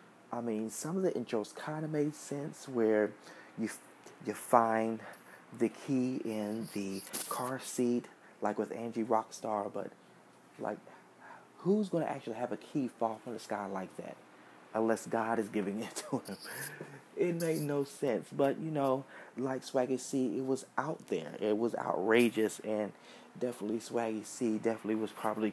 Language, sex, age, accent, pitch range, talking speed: English, male, 30-49, American, 105-135 Hz, 165 wpm